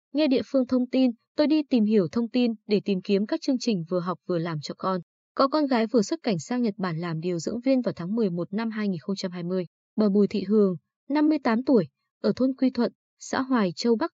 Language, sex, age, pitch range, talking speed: Vietnamese, female, 20-39, 190-250 Hz, 235 wpm